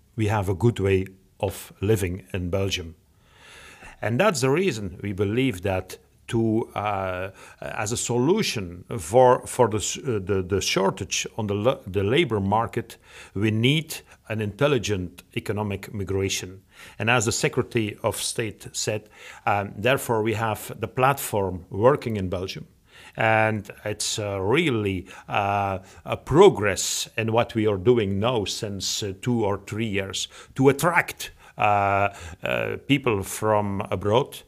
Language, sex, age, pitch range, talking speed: English, male, 50-69, 100-115 Hz, 145 wpm